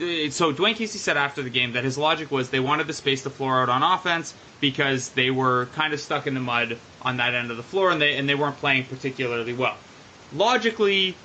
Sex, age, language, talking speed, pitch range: male, 20-39, English, 235 wpm, 130-170 Hz